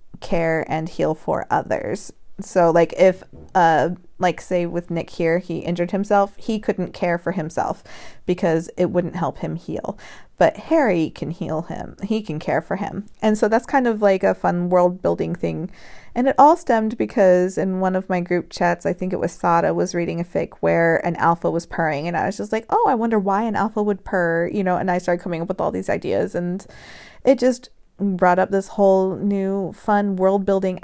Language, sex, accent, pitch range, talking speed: English, female, American, 170-205 Hz, 210 wpm